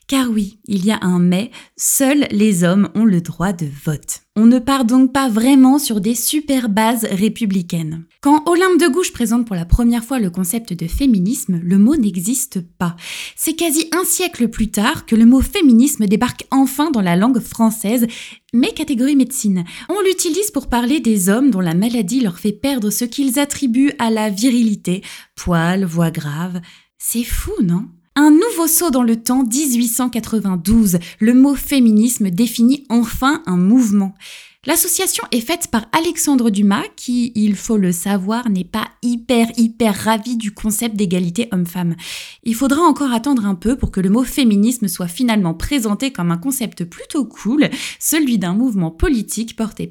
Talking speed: 175 wpm